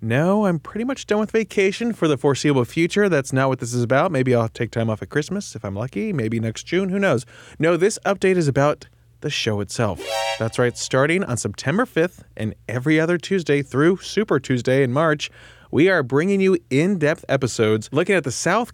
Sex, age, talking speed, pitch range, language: male, 20-39, 210 wpm, 120-165 Hz, English